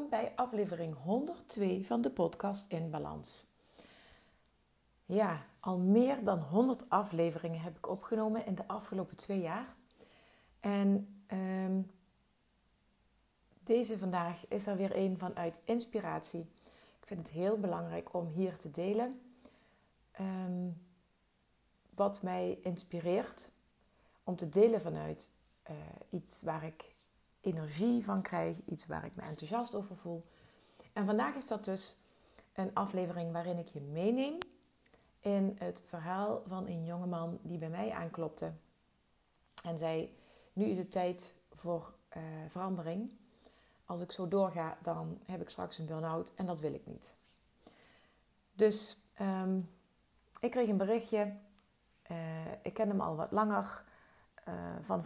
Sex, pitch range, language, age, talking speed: female, 170-215 Hz, Dutch, 40-59, 130 wpm